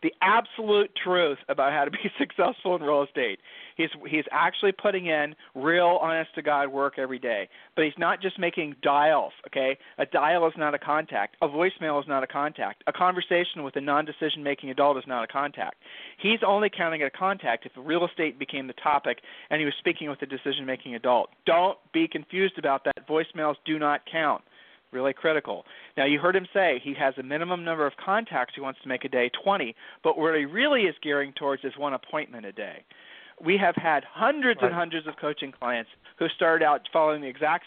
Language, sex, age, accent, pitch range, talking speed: English, male, 40-59, American, 140-180 Hz, 200 wpm